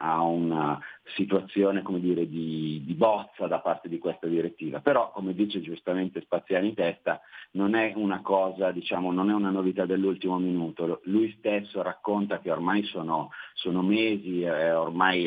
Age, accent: 40-59, native